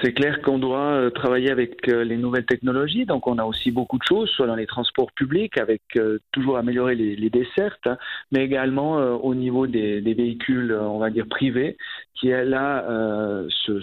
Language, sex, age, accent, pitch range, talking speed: French, male, 40-59, French, 125-155 Hz, 190 wpm